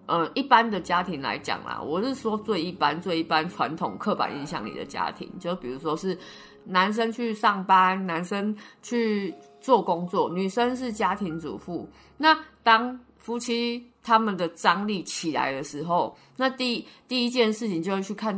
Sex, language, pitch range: female, Chinese, 170-230 Hz